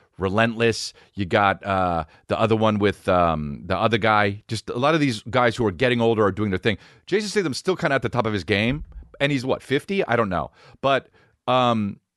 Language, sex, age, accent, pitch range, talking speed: English, male, 40-59, American, 120-195 Hz, 225 wpm